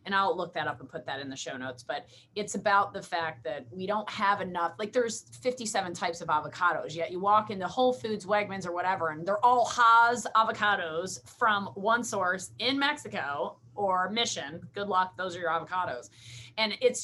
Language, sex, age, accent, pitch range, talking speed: English, female, 30-49, American, 165-235 Hz, 200 wpm